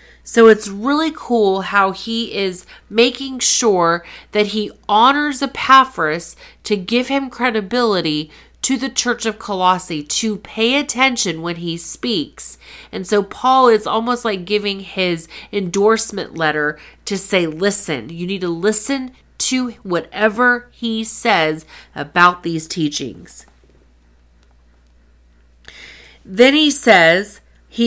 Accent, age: American, 30-49